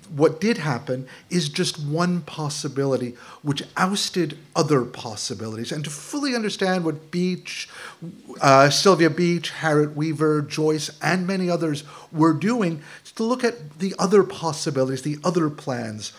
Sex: male